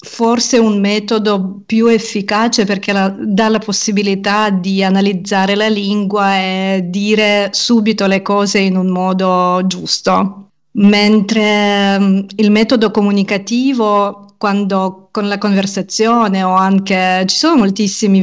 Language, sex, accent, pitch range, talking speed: Italian, female, native, 190-215 Hz, 120 wpm